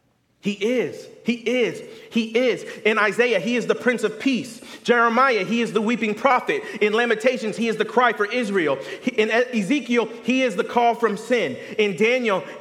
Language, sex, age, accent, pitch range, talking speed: English, male, 30-49, American, 215-255 Hz, 180 wpm